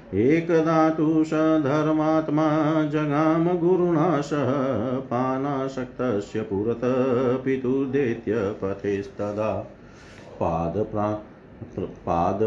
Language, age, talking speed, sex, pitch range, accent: Hindi, 50-69, 50 wpm, male, 105-135 Hz, native